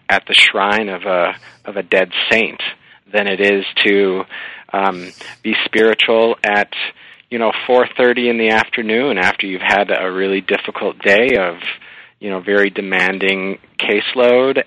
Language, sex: English, male